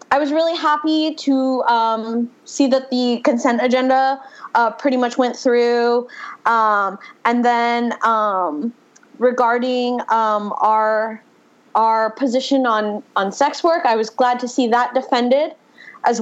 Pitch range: 225-270 Hz